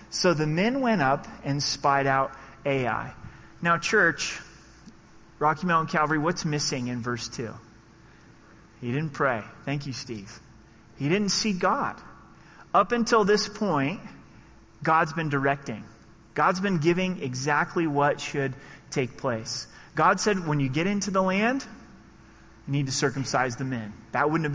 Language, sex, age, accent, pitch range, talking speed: English, male, 30-49, American, 130-165 Hz, 150 wpm